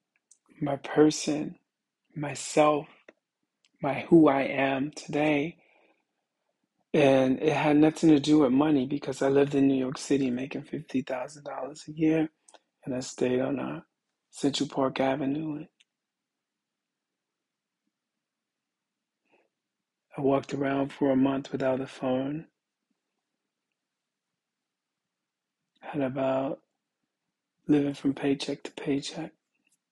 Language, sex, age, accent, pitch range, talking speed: English, male, 40-59, American, 135-150 Hz, 100 wpm